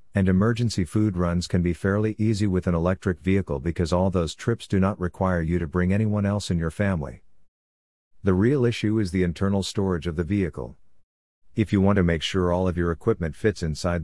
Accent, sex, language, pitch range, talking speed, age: American, male, English, 85-105 Hz, 210 wpm, 50-69